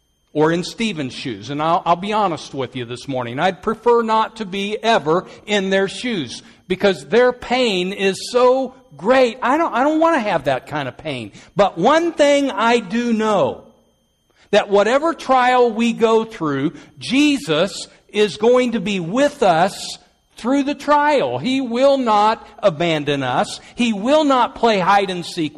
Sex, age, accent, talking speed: male, 60-79, American, 170 wpm